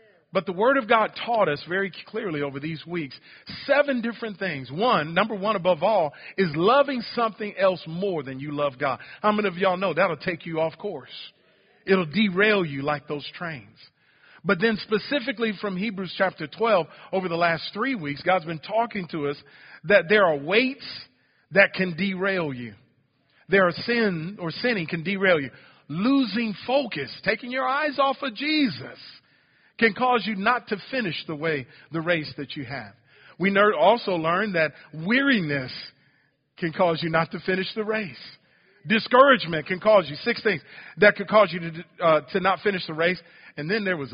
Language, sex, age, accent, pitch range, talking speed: English, male, 40-59, American, 150-210 Hz, 180 wpm